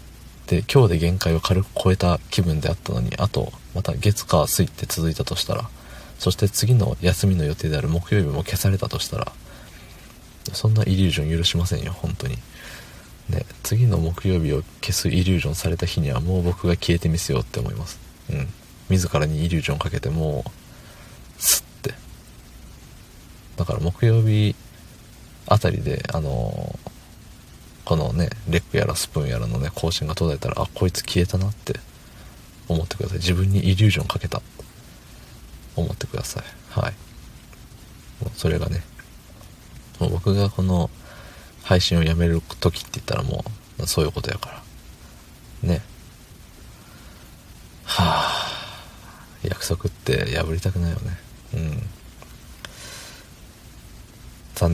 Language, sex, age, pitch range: Japanese, male, 40-59, 80-105 Hz